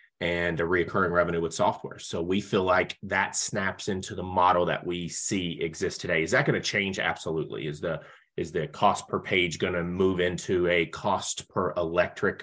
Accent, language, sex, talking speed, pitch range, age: American, English, male, 200 wpm, 85-105 Hz, 30-49